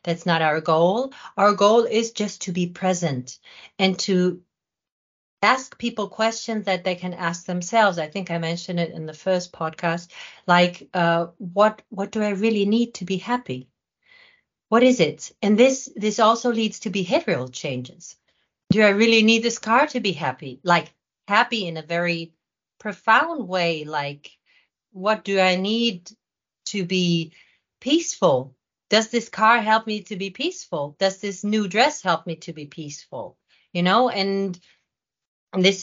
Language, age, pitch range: English, 40-59, 170-215 Hz